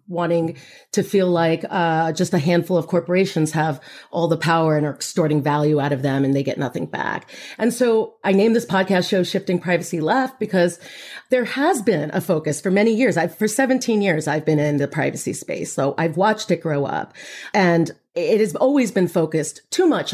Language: English